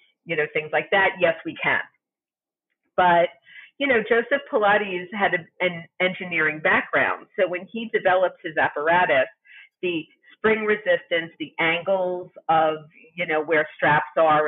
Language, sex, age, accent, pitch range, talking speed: English, female, 40-59, American, 160-220 Hz, 145 wpm